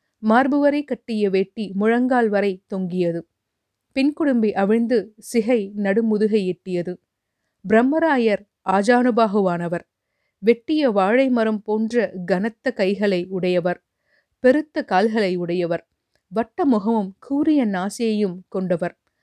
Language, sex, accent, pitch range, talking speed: Tamil, female, native, 190-245 Hz, 90 wpm